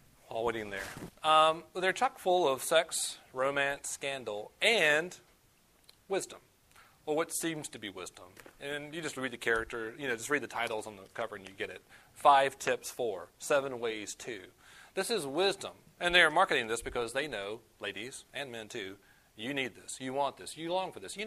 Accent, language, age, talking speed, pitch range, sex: American, English, 40-59, 195 wpm, 115-160 Hz, male